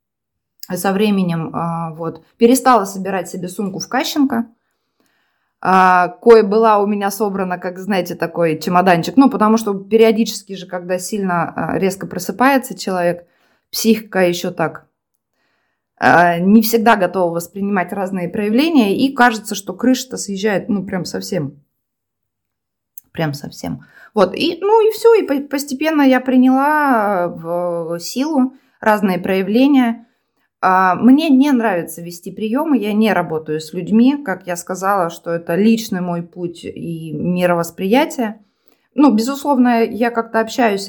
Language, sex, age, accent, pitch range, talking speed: Russian, female, 20-39, native, 180-240 Hz, 125 wpm